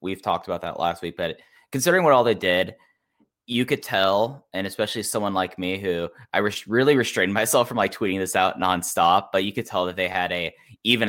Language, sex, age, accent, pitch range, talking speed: English, male, 10-29, American, 90-110 Hz, 215 wpm